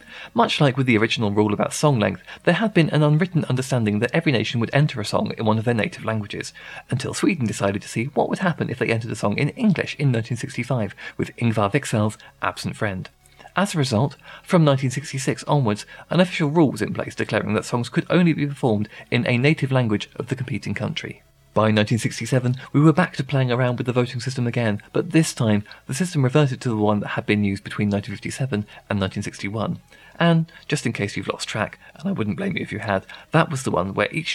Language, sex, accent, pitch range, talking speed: English, male, British, 105-150 Hz, 225 wpm